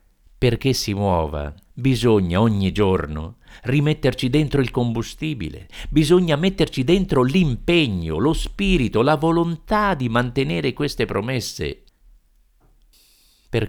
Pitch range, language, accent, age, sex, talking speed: 80-120 Hz, Italian, native, 50-69, male, 100 wpm